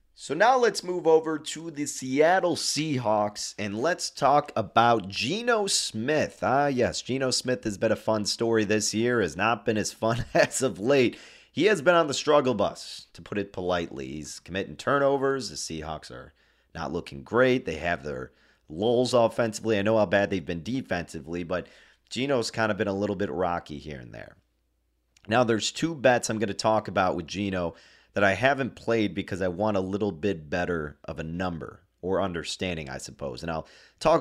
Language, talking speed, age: English, 195 wpm, 30-49